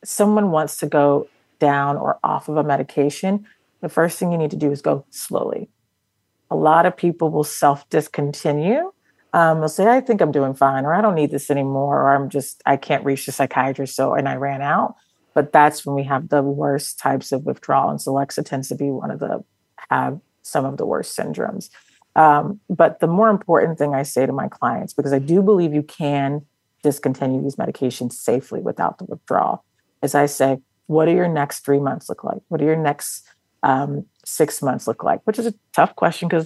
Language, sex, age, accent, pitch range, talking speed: English, female, 40-59, American, 140-160 Hz, 210 wpm